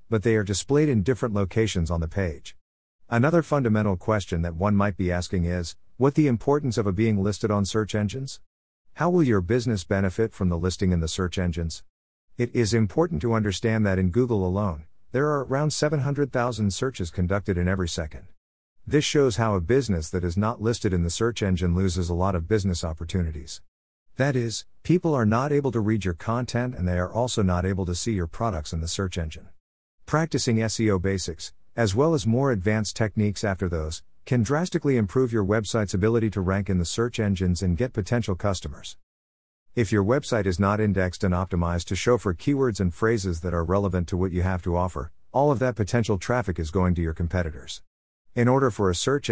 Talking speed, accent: 205 wpm, American